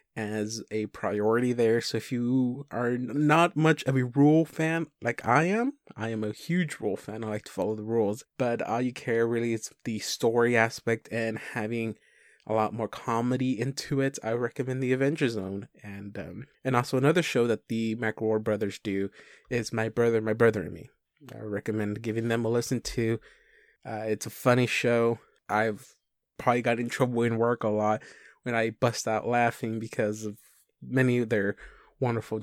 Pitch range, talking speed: 110-130 Hz, 185 wpm